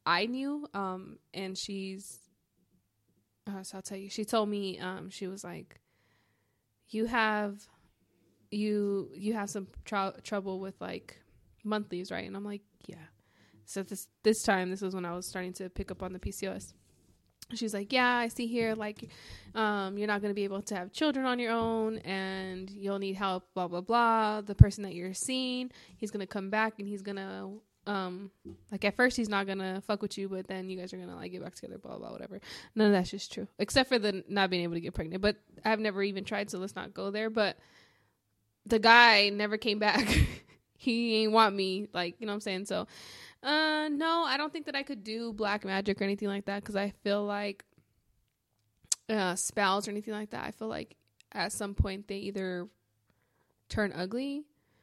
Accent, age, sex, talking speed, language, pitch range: American, 10-29, female, 210 wpm, English, 185-215 Hz